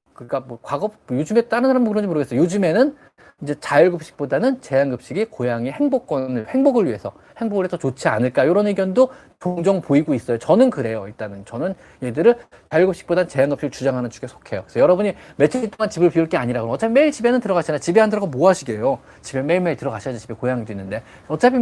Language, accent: Korean, native